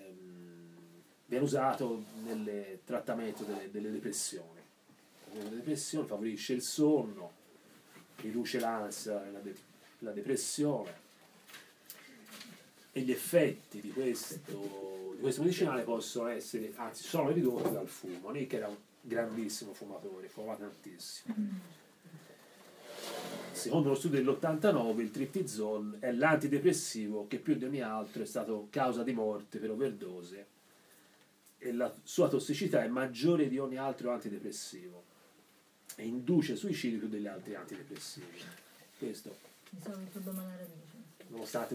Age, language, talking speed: 30-49, Italian, 115 wpm